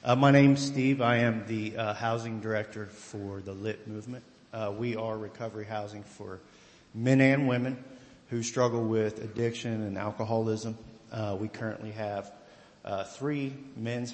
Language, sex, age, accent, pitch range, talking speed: English, male, 50-69, American, 110-120 Hz, 155 wpm